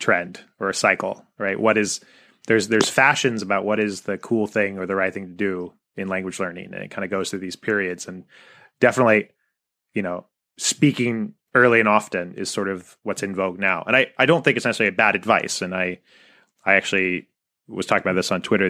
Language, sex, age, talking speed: English, male, 30-49, 220 wpm